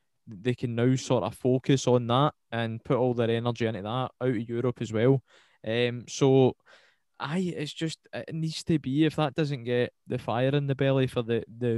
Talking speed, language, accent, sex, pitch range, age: 210 wpm, English, British, male, 115-130 Hz, 20-39